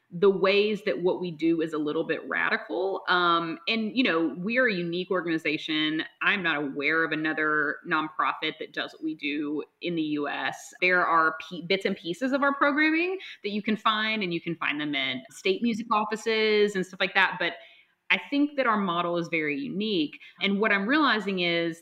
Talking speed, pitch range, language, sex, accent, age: 200 wpm, 165-225 Hz, English, female, American, 30-49